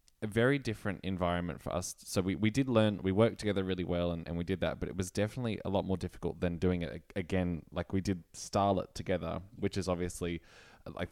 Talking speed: 225 wpm